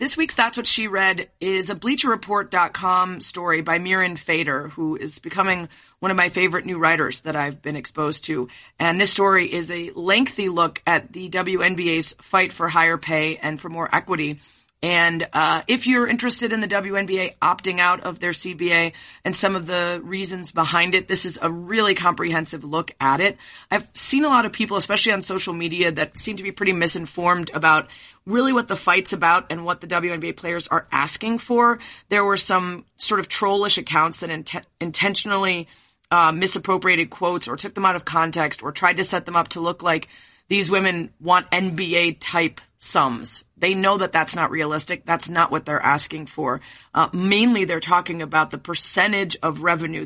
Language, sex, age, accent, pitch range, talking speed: English, female, 30-49, American, 165-195 Hz, 190 wpm